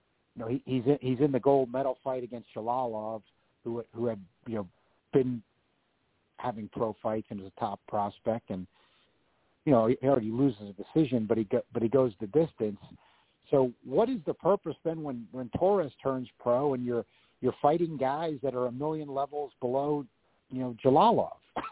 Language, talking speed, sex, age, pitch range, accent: English, 190 wpm, male, 50-69, 110-140 Hz, American